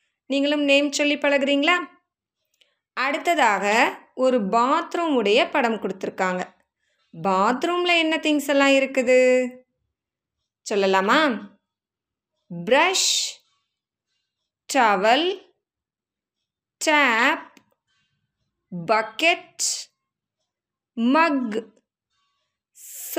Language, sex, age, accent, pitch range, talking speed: Tamil, female, 20-39, native, 225-315 Hz, 35 wpm